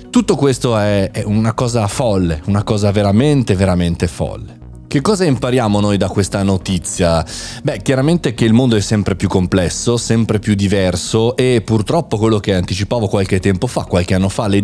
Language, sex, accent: Italian, male, native